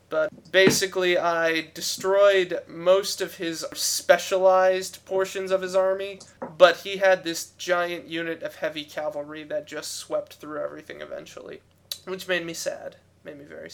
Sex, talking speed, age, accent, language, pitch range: male, 150 wpm, 20-39, American, English, 155-185 Hz